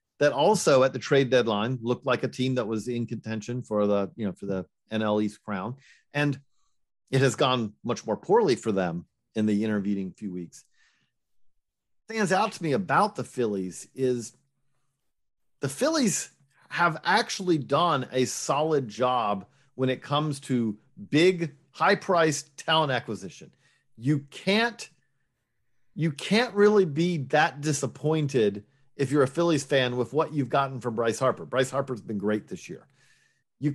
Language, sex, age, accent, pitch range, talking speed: English, male, 40-59, American, 125-170 Hz, 160 wpm